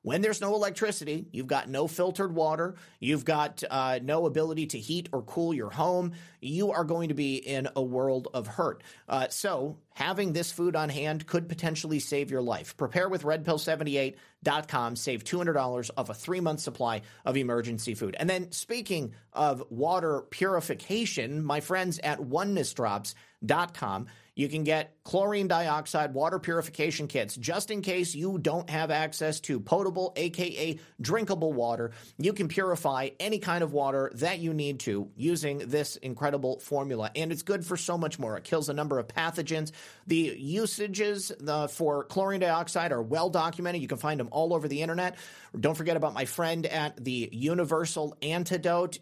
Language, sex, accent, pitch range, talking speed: English, male, American, 140-175 Hz, 170 wpm